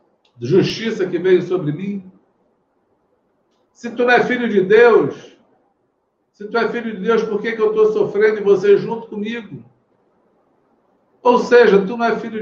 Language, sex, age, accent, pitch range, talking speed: Portuguese, male, 60-79, Brazilian, 180-225 Hz, 165 wpm